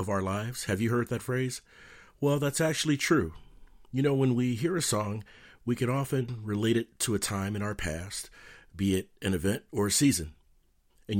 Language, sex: English, male